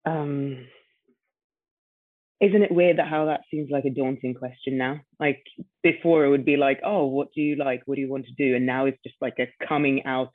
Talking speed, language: 220 wpm, English